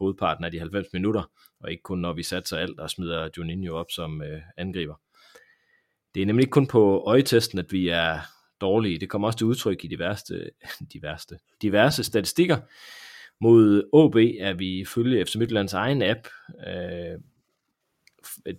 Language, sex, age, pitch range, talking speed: Danish, male, 30-49, 85-115 Hz, 170 wpm